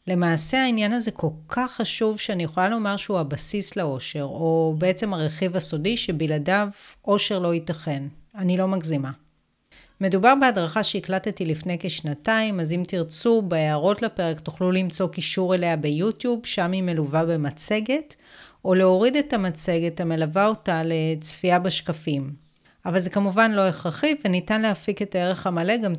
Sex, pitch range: female, 165-220 Hz